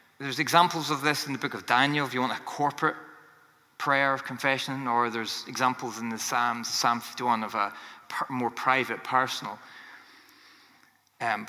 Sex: male